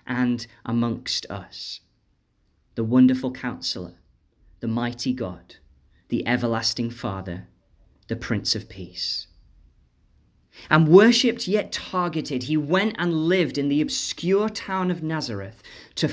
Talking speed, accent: 115 wpm, British